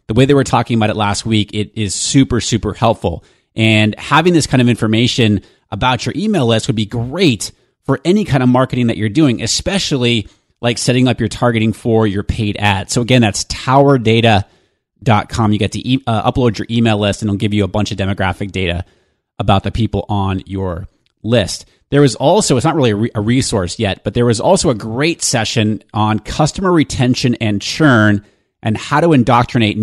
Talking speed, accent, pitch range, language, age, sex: 195 wpm, American, 105-125 Hz, English, 30-49, male